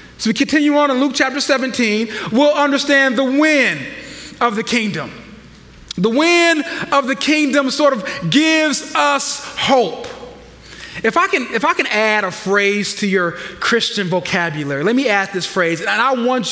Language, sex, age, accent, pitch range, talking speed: English, male, 30-49, American, 205-290 Hz, 160 wpm